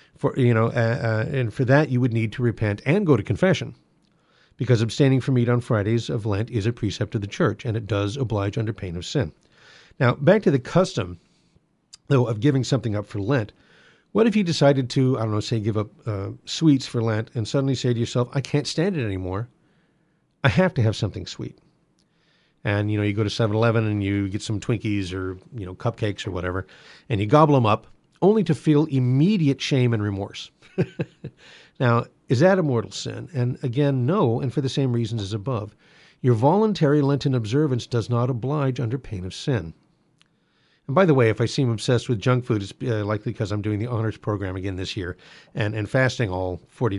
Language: English